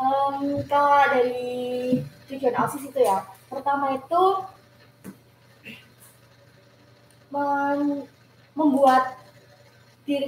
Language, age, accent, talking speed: Indonesian, 20-39, native, 60 wpm